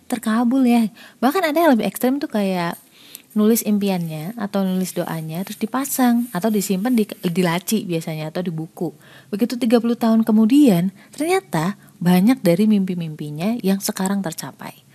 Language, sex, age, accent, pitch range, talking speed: Indonesian, female, 30-49, native, 170-220 Hz, 140 wpm